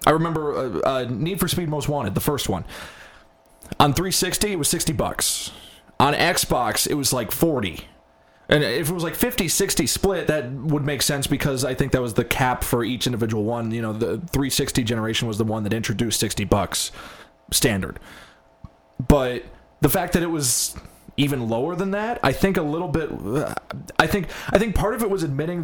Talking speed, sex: 195 wpm, male